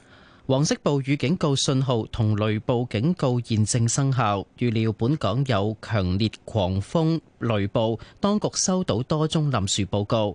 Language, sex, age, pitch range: Chinese, male, 30-49, 110-150 Hz